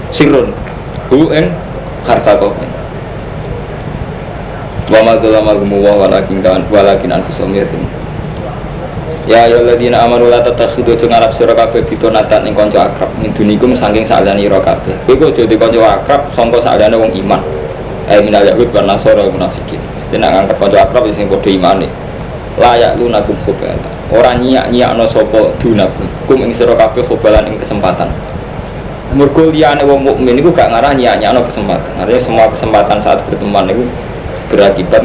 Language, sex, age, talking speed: Indonesian, male, 20-39, 55 wpm